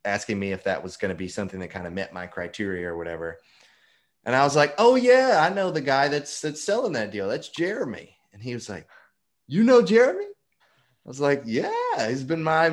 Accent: American